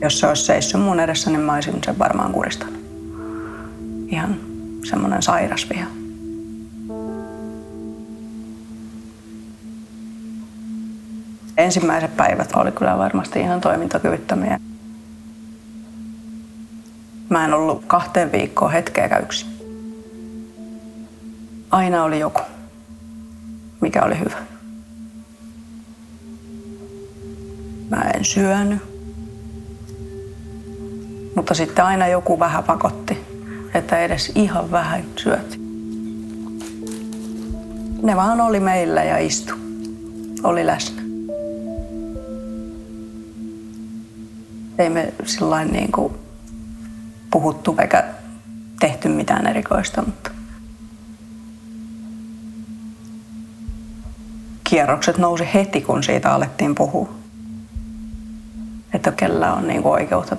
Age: 30-49